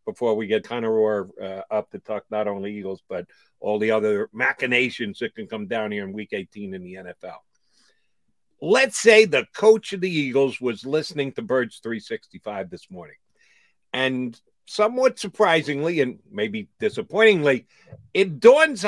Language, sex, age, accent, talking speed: English, male, 50-69, American, 155 wpm